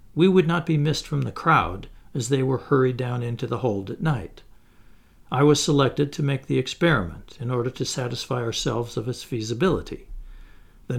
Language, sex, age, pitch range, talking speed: English, male, 60-79, 125-155 Hz, 185 wpm